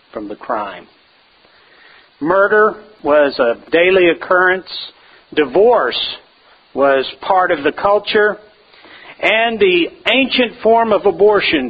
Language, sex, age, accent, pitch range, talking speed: English, male, 50-69, American, 155-225 Hz, 105 wpm